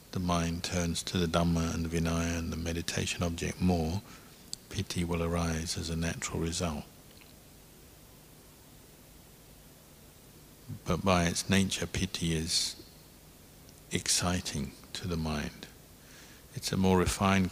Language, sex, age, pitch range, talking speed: English, male, 50-69, 80-90 Hz, 120 wpm